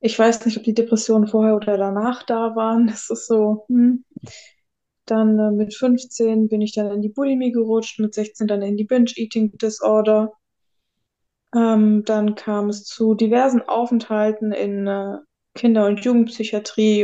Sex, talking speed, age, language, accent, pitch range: female, 160 wpm, 20-39, German, German, 205-235 Hz